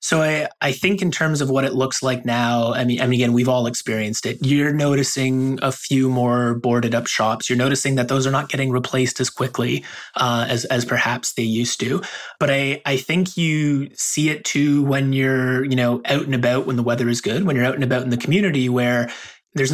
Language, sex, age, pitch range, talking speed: English, male, 20-39, 120-140 Hz, 230 wpm